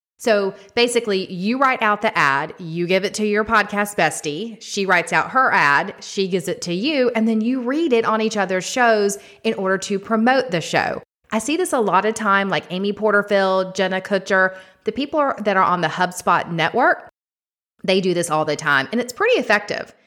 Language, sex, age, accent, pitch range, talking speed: English, female, 30-49, American, 175-235 Hz, 205 wpm